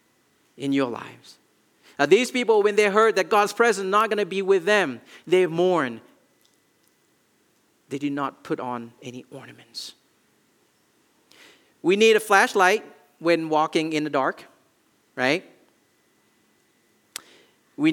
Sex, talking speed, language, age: male, 130 wpm, English, 40-59